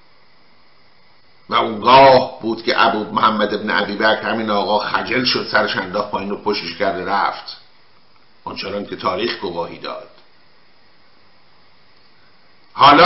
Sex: male